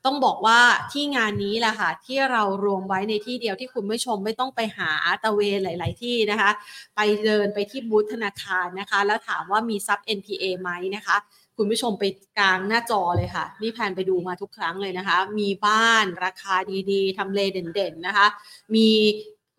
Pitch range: 200-240 Hz